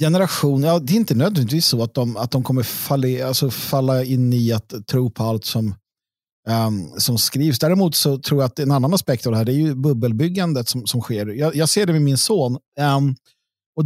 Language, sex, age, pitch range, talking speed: Swedish, male, 50-69, 120-160 Hz, 230 wpm